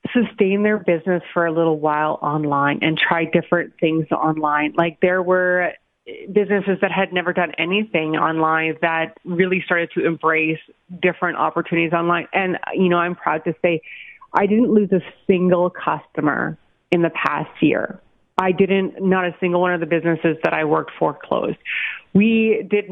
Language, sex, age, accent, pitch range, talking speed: English, female, 30-49, American, 165-195 Hz, 170 wpm